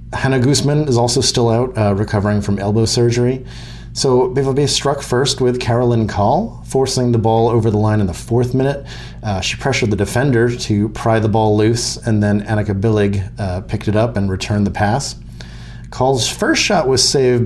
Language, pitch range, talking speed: English, 100-120 Hz, 190 wpm